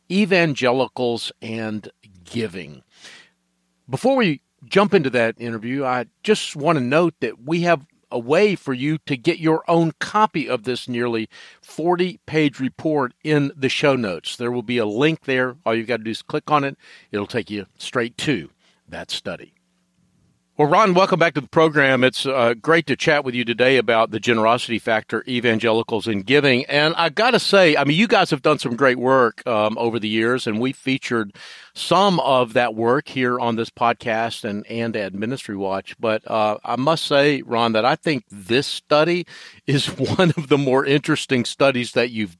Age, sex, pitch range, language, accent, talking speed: 50-69, male, 115-150 Hz, English, American, 190 wpm